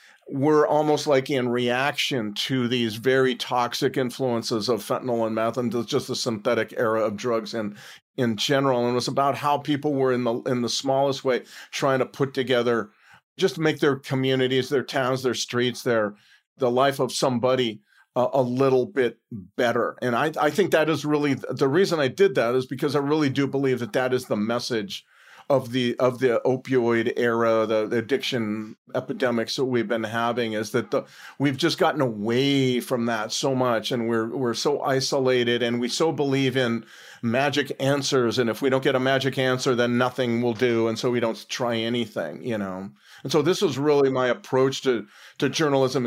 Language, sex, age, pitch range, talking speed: English, male, 40-59, 120-135 Hz, 195 wpm